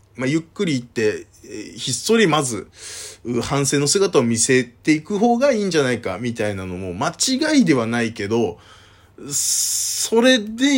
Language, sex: Japanese, male